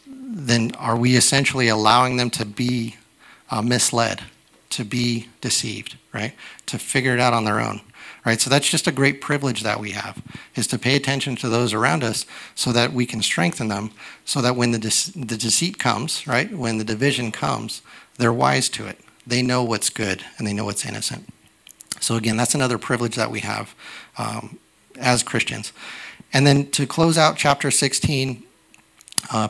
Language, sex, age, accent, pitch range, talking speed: English, male, 40-59, American, 115-130 Hz, 185 wpm